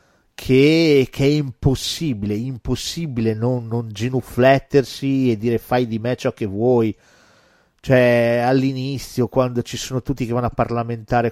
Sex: male